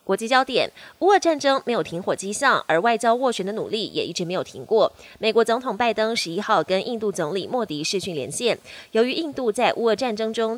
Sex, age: female, 20-39